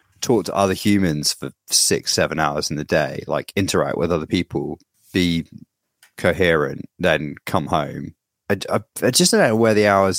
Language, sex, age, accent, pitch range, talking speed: English, male, 30-49, British, 85-105 Hz, 185 wpm